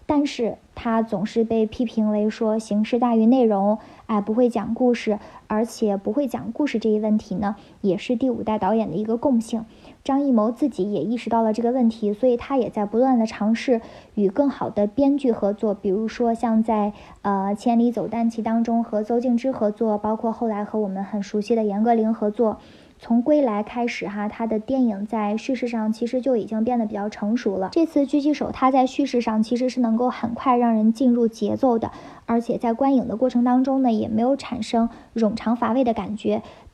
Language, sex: Chinese, male